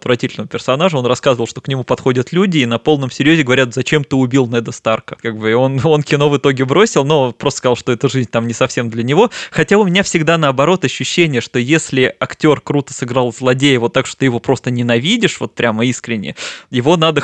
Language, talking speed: Russian, 220 wpm